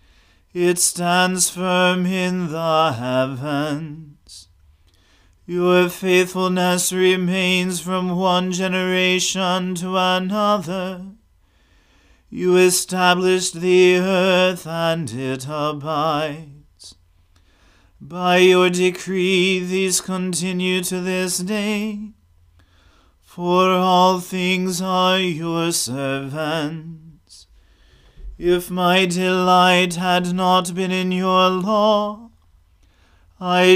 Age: 40-59